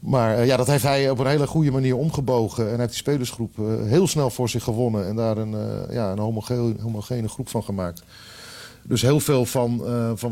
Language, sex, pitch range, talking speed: Dutch, male, 105-125 Hz, 205 wpm